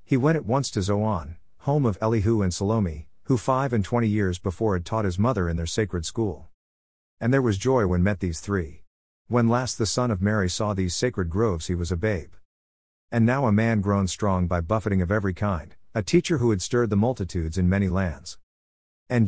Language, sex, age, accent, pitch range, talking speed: English, male, 50-69, American, 90-115 Hz, 215 wpm